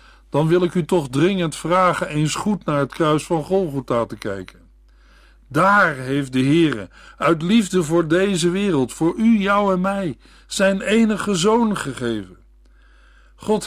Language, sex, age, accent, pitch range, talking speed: Dutch, male, 50-69, Dutch, 115-180 Hz, 155 wpm